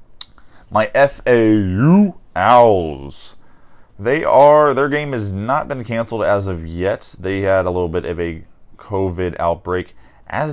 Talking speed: 130 wpm